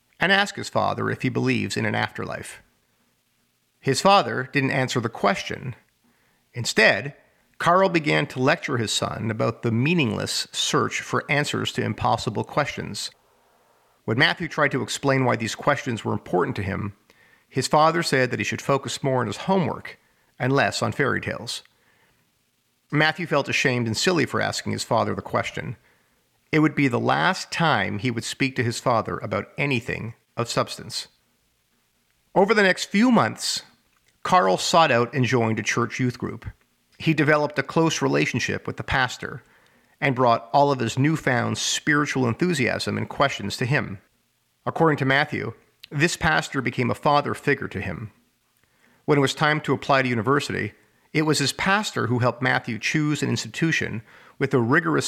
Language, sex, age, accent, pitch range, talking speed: English, male, 50-69, American, 115-150 Hz, 165 wpm